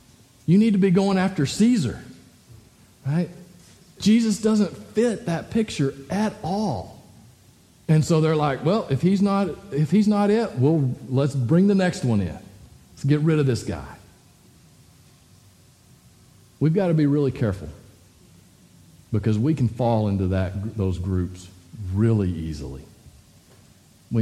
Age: 50-69